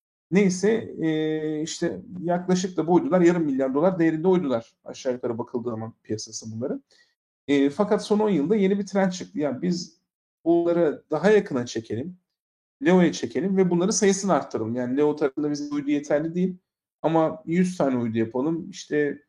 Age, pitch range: 50-69, 135-180 Hz